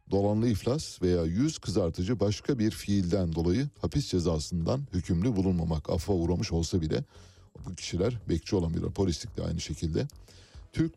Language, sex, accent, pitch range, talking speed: Turkish, male, native, 85-105 Hz, 140 wpm